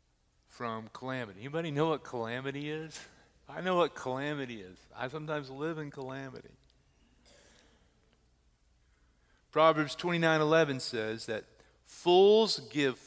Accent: American